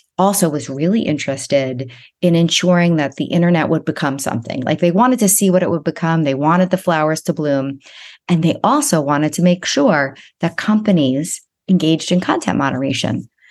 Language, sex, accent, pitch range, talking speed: English, female, American, 150-190 Hz, 180 wpm